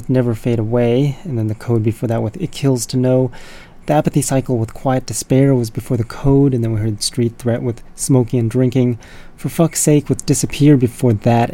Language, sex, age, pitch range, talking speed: English, male, 30-49, 115-130 Hz, 215 wpm